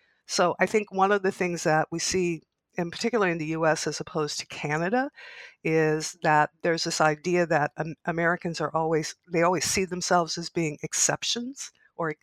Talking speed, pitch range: 165 wpm, 155-185 Hz